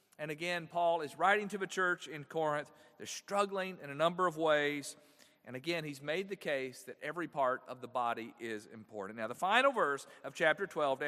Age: 40-59